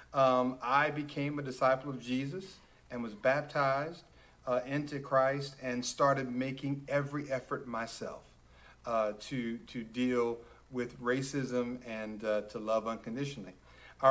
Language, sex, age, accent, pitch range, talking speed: English, male, 40-59, American, 110-140 Hz, 130 wpm